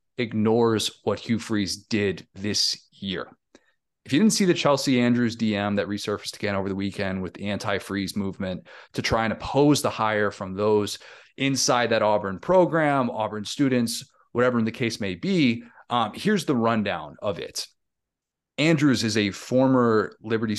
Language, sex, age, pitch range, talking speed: English, male, 30-49, 100-125 Hz, 160 wpm